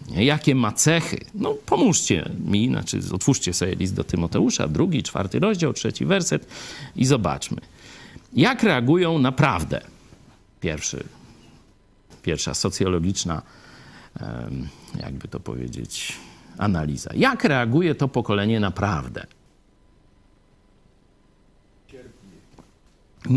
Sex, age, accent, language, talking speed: male, 50-69, native, Polish, 90 wpm